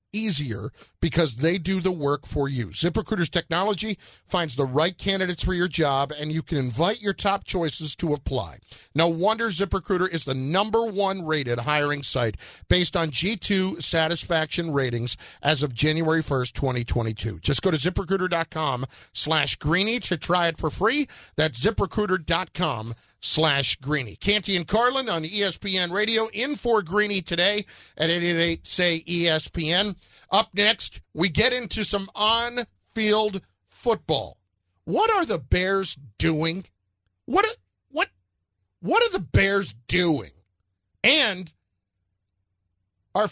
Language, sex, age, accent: English, male, 50-69, American